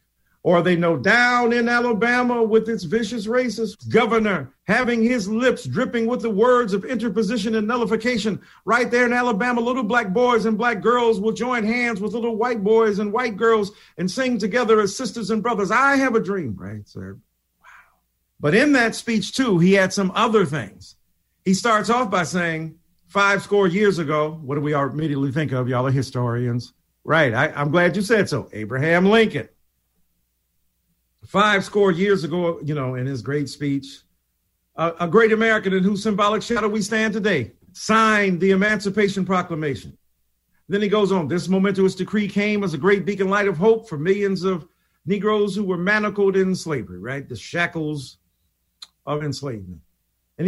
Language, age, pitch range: English, 50-69, 145-225 Hz